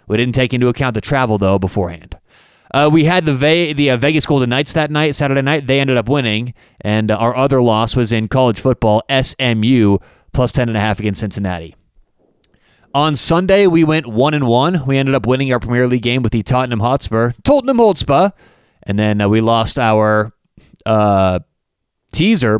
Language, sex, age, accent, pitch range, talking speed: English, male, 30-49, American, 110-140 Hz, 190 wpm